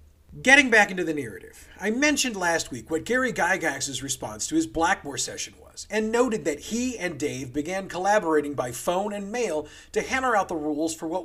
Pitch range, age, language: 150-210 Hz, 40-59, English